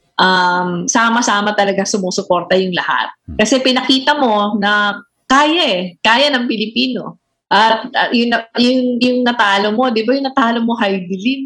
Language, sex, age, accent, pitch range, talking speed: English, female, 20-39, Filipino, 190-230 Hz, 140 wpm